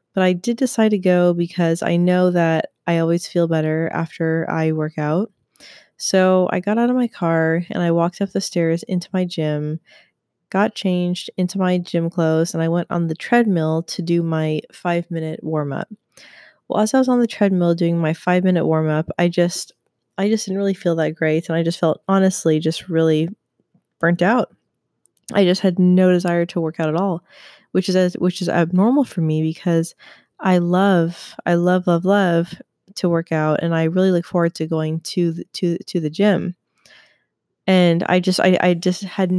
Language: English